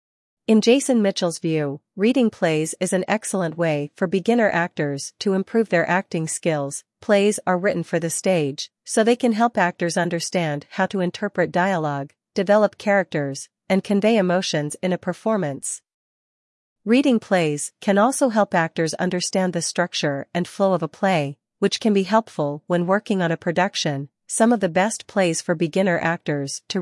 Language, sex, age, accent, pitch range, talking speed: English, female, 40-59, American, 160-200 Hz, 165 wpm